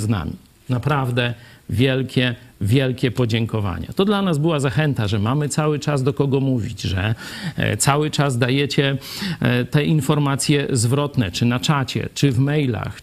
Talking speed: 145 wpm